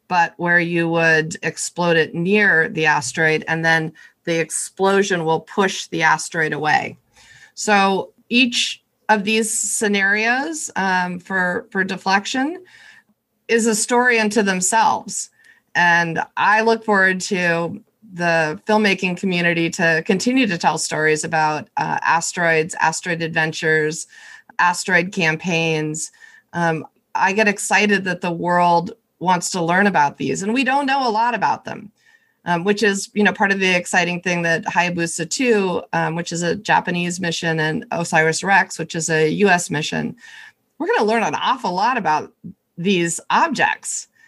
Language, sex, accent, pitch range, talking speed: English, female, American, 170-220 Hz, 145 wpm